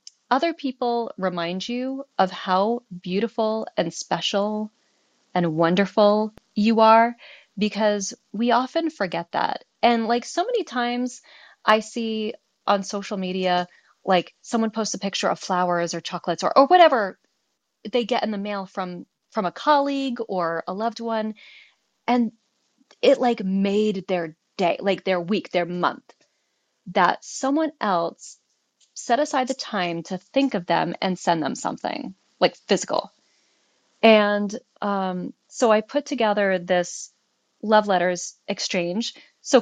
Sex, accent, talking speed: female, American, 140 wpm